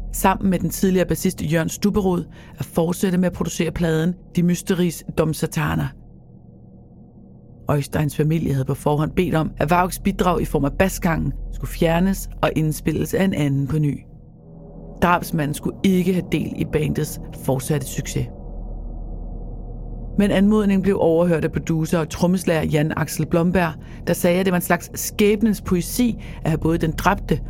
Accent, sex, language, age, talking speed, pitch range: native, female, Danish, 40-59, 160 wpm, 155-185 Hz